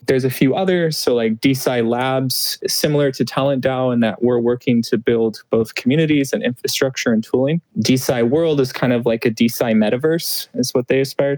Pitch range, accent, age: 120-150 Hz, American, 20-39